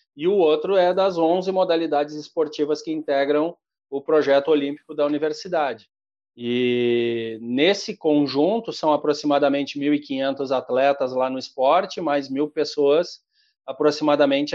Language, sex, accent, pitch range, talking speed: Portuguese, male, Brazilian, 140-175 Hz, 120 wpm